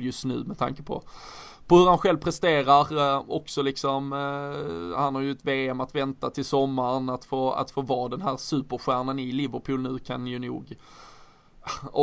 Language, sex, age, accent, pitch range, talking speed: Swedish, male, 20-39, native, 130-145 Hz, 190 wpm